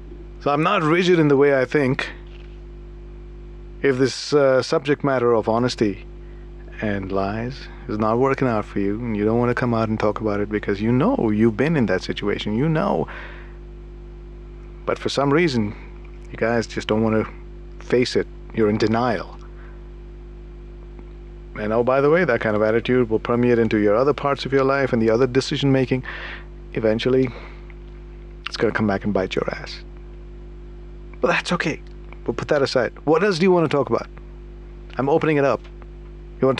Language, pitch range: English, 115-150 Hz